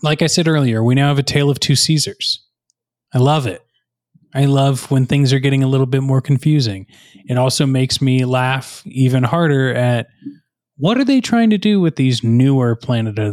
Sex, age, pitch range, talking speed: male, 20-39, 125-165 Hz, 205 wpm